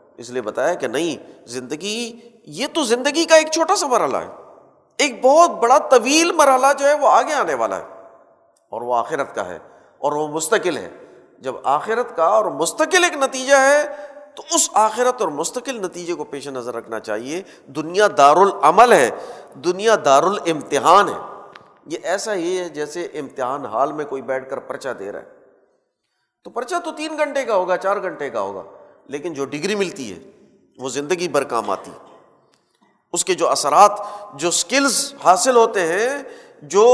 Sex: male